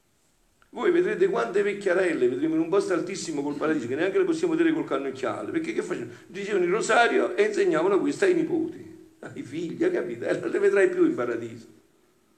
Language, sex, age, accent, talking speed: Italian, male, 50-69, native, 195 wpm